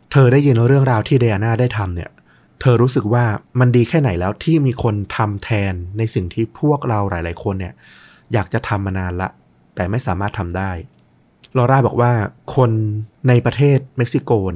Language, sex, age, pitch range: Thai, male, 30-49, 100-130 Hz